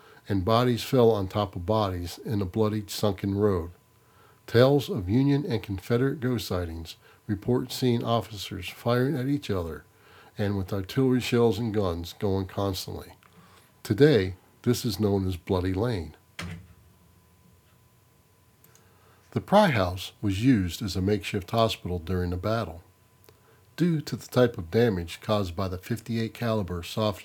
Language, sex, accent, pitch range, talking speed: English, male, American, 95-115 Hz, 145 wpm